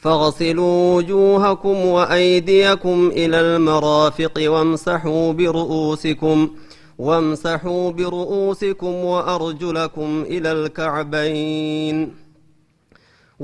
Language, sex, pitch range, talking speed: Amharic, male, 160-185 Hz, 50 wpm